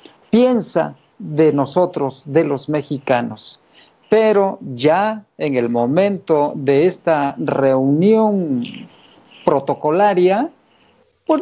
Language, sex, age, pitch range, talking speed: Spanish, male, 50-69, 145-210 Hz, 85 wpm